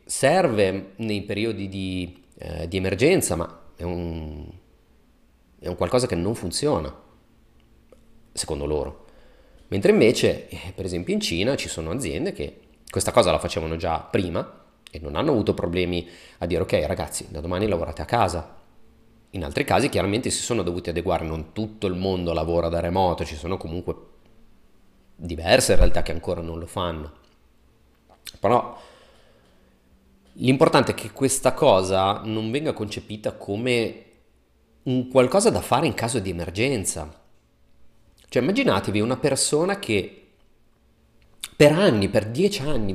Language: Italian